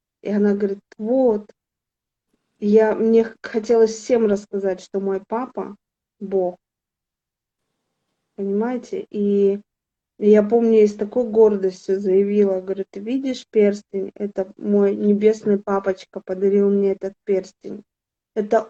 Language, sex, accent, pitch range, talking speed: Russian, female, native, 195-225 Hz, 110 wpm